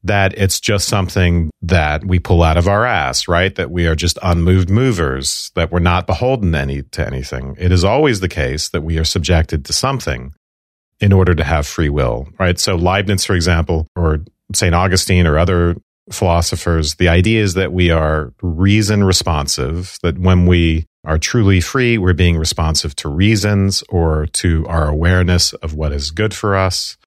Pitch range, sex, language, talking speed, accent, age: 80-95 Hz, male, English, 180 wpm, American, 40-59